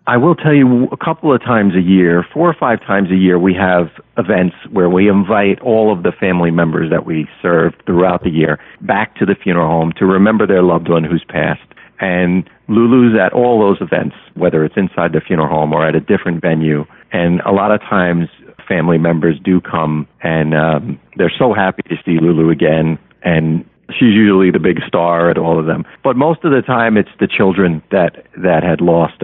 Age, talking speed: 50-69, 210 wpm